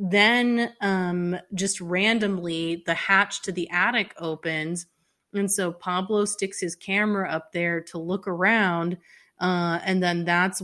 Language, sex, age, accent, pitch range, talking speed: English, female, 30-49, American, 170-200 Hz, 140 wpm